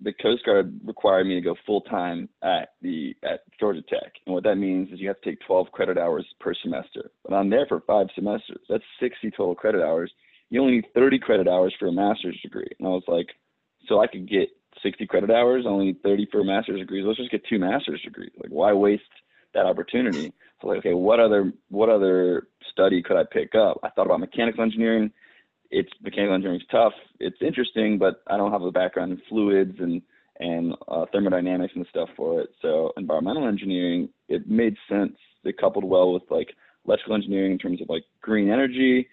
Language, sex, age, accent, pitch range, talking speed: English, male, 20-39, American, 90-115 Hz, 205 wpm